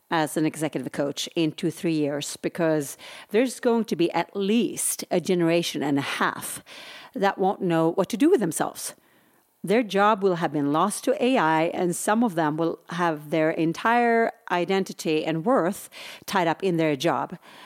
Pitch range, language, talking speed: 160-205 Hz, English, 175 wpm